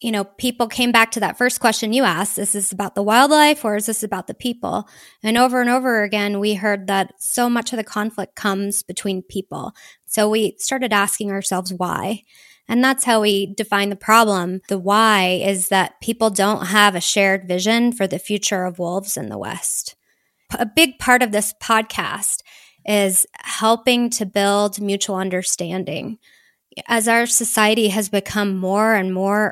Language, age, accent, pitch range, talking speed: English, 20-39, American, 200-235 Hz, 180 wpm